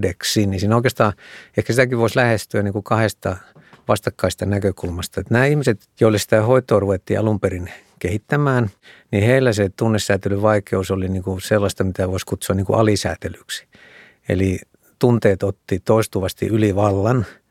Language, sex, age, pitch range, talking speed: Finnish, male, 60-79, 95-110 Hz, 140 wpm